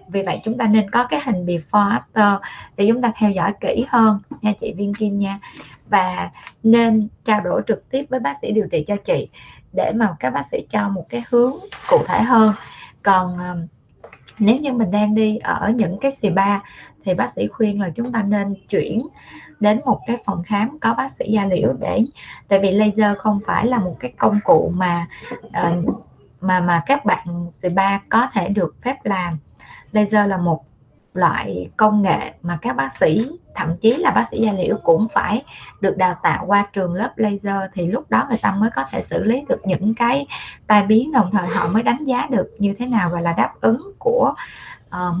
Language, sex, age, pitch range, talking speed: Vietnamese, female, 20-39, 185-230 Hz, 205 wpm